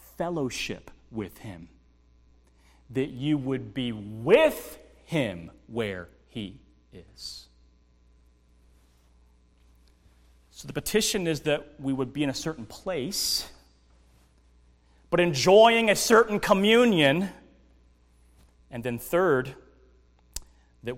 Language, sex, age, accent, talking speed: English, male, 30-49, American, 95 wpm